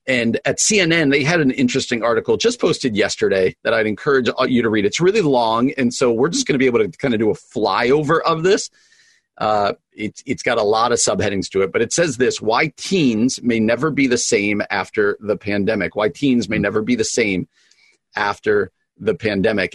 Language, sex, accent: English, male, American